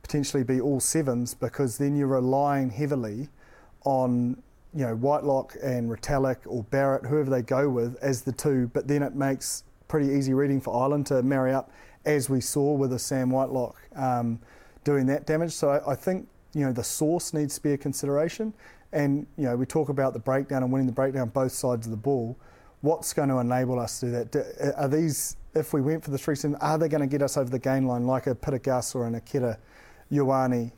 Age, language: 30-49, English